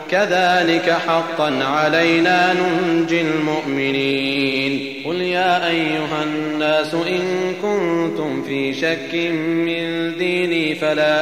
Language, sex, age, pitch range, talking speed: Arabic, male, 30-49, 155-180 Hz, 85 wpm